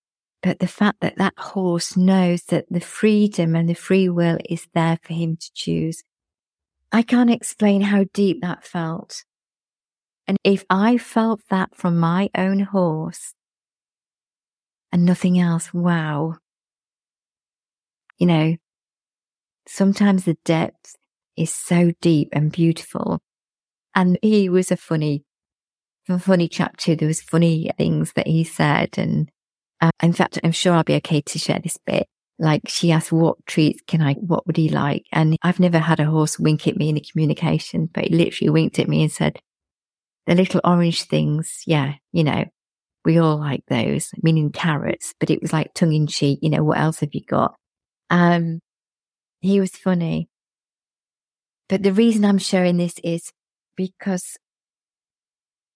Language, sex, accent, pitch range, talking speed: English, female, British, 160-185 Hz, 155 wpm